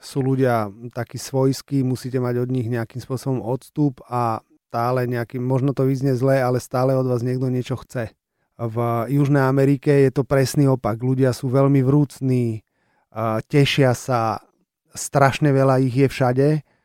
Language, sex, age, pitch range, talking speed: Slovak, male, 30-49, 120-135 Hz, 150 wpm